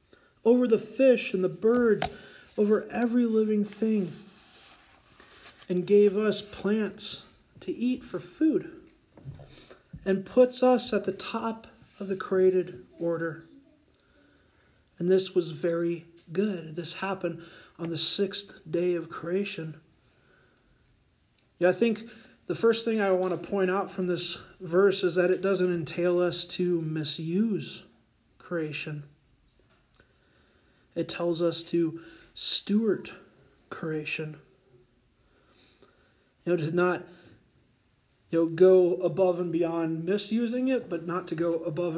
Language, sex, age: English, male, 40-59